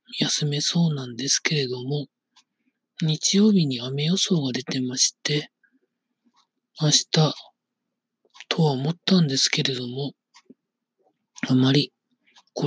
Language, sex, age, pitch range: Japanese, male, 40-59, 140-195 Hz